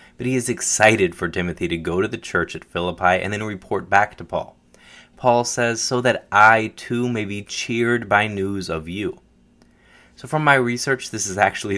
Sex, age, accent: male, 20-39, American